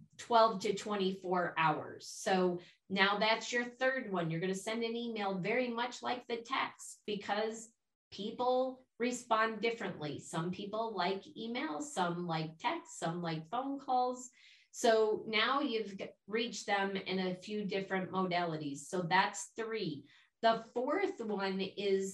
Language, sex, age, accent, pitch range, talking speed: English, female, 30-49, American, 190-230 Hz, 140 wpm